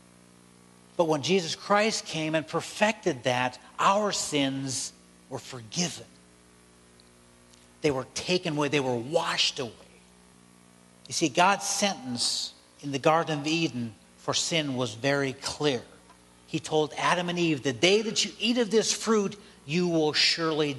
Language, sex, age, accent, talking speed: English, male, 50-69, American, 145 wpm